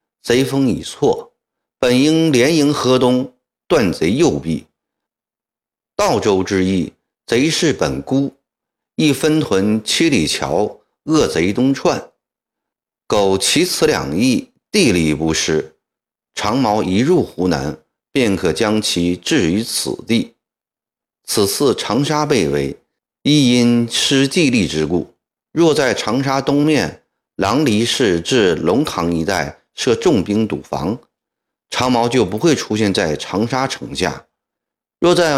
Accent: native